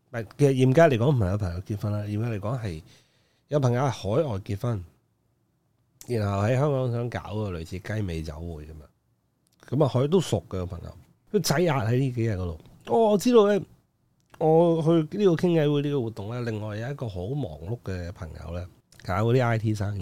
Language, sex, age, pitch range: Chinese, male, 30-49, 100-140 Hz